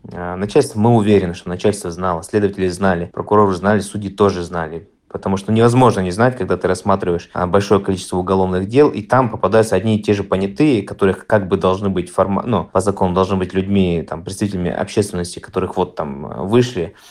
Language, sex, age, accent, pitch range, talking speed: Russian, male, 20-39, native, 90-105 Hz, 180 wpm